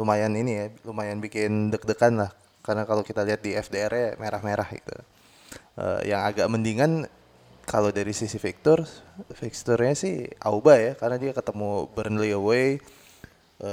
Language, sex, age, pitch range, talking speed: Indonesian, male, 20-39, 105-130 Hz, 145 wpm